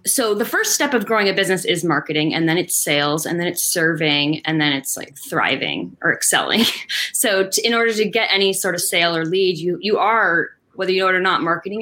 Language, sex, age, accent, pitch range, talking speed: English, female, 20-39, American, 190-260 Hz, 235 wpm